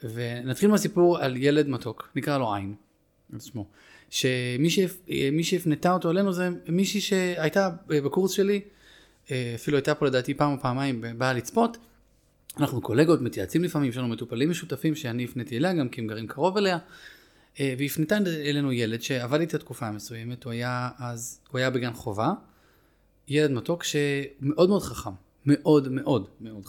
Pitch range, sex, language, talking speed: 120-160 Hz, male, Hebrew, 145 wpm